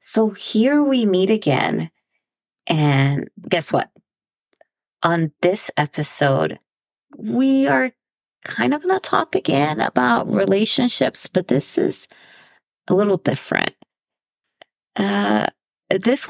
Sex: female